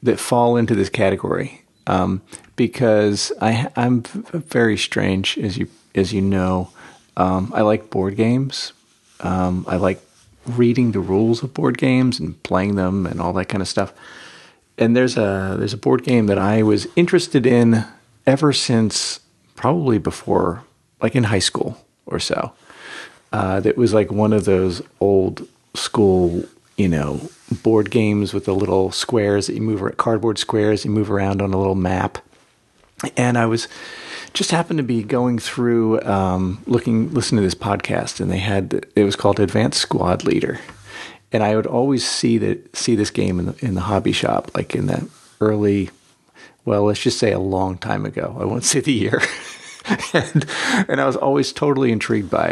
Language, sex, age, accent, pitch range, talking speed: English, male, 40-59, American, 95-120 Hz, 180 wpm